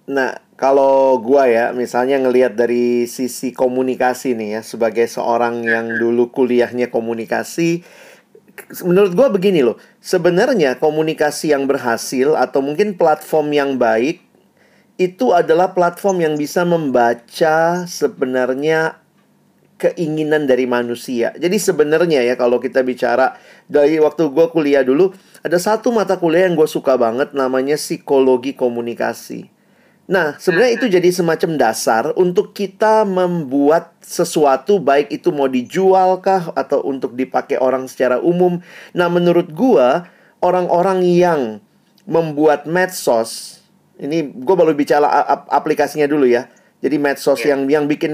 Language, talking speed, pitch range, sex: Indonesian, 125 wpm, 130-180 Hz, male